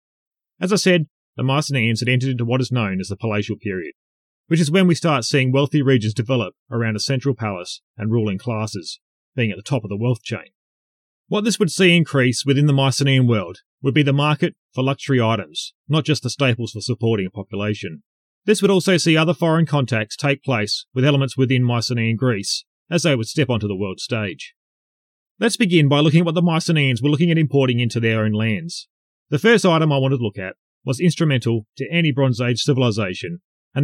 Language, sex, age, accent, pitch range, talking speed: English, male, 30-49, Australian, 110-155 Hz, 205 wpm